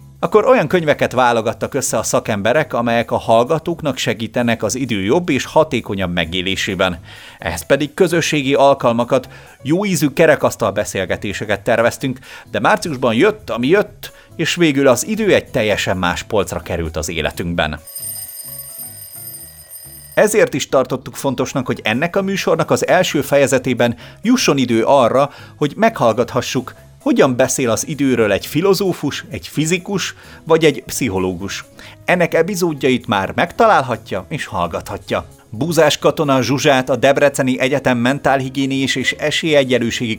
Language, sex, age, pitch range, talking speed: Hungarian, male, 30-49, 115-150 Hz, 125 wpm